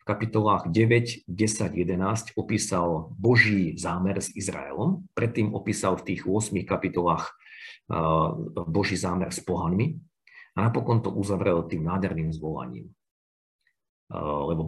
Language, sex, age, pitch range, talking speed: Slovak, male, 50-69, 85-110 Hz, 110 wpm